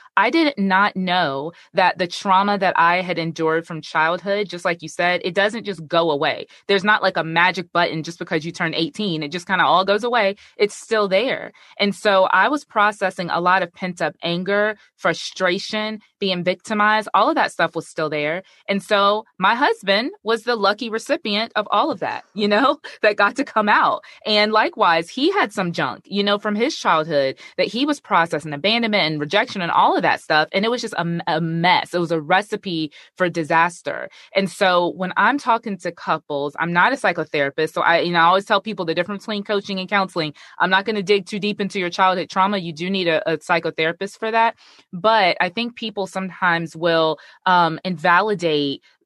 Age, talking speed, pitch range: 20-39, 210 wpm, 170-210 Hz